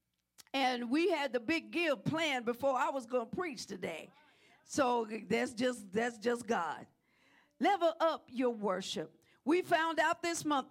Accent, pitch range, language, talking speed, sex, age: American, 230-300 Hz, English, 165 wpm, female, 50-69